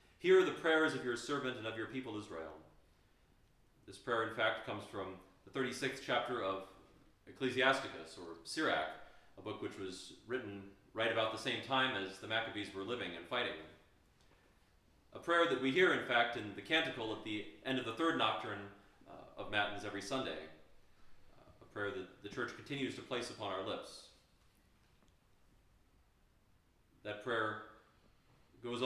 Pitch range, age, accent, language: 100-130 Hz, 30-49, American, English